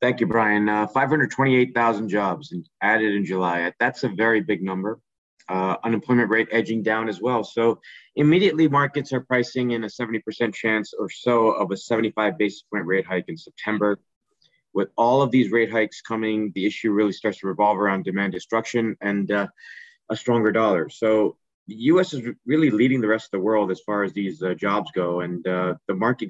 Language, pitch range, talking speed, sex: English, 100-120 Hz, 190 wpm, male